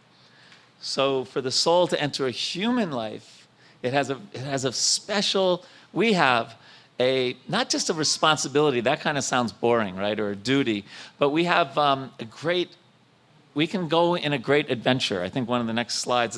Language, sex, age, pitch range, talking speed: English, male, 40-59, 115-155 Hz, 190 wpm